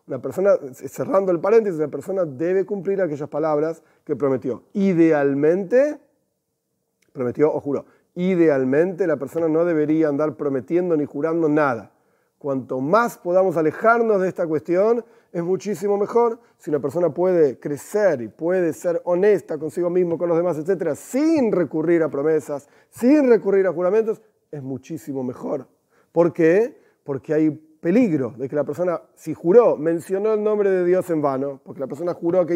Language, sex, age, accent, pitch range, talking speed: Spanish, male, 40-59, Argentinian, 150-195 Hz, 160 wpm